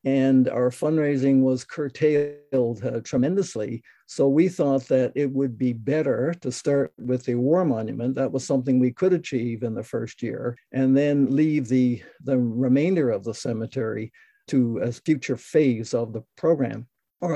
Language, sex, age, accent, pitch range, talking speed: English, male, 60-79, American, 130-150 Hz, 165 wpm